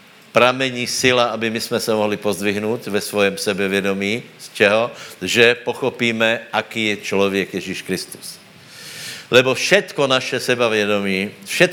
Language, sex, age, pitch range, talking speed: Slovak, male, 60-79, 95-110 Hz, 130 wpm